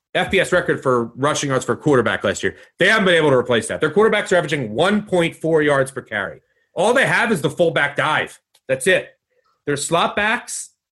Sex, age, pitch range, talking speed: male, 30-49, 135-180 Hz, 200 wpm